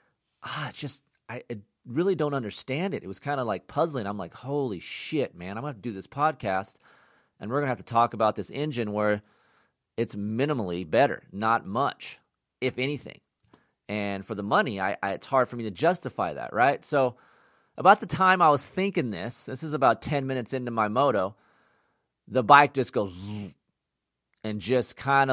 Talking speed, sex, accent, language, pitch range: 195 wpm, male, American, English, 110-140 Hz